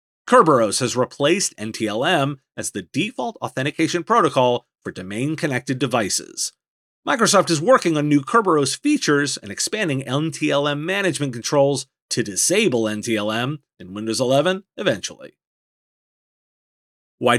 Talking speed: 110 wpm